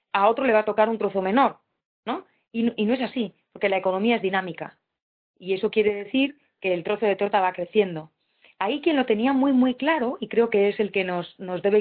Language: Spanish